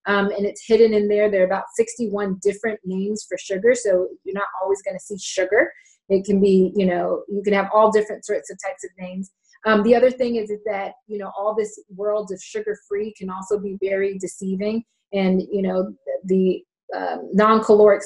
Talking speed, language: 210 wpm, English